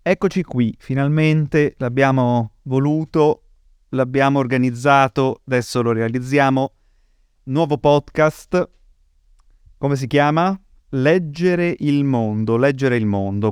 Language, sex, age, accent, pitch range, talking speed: Italian, male, 30-49, native, 120-145 Hz, 95 wpm